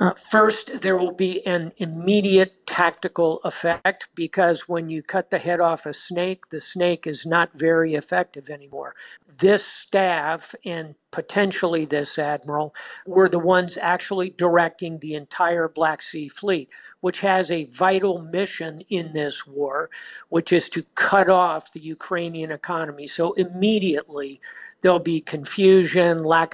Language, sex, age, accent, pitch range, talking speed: English, male, 50-69, American, 155-185 Hz, 140 wpm